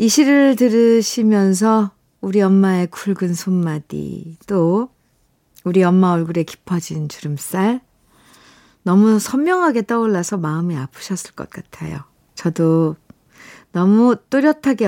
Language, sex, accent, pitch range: Korean, female, native, 170-225 Hz